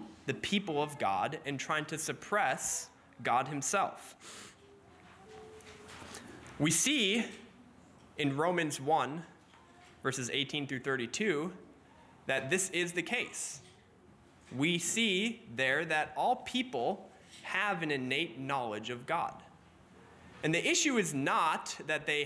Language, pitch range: English, 135-185 Hz